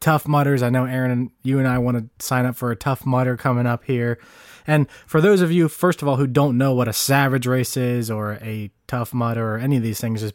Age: 20-39